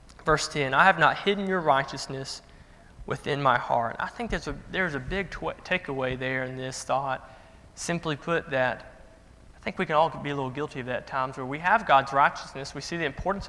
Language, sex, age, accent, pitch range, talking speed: English, male, 20-39, American, 130-155 Hz, 220 wpm